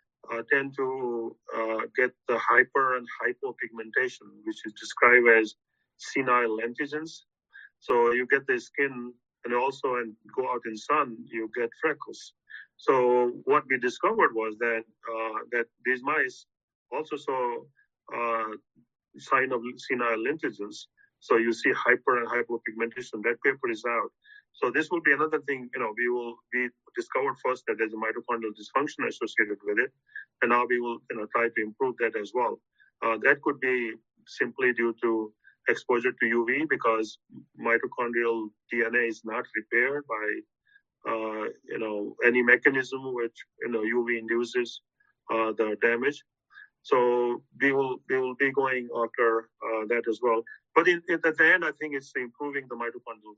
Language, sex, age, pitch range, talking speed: English, male, 40-59, 115-155 Hz, 160 wpm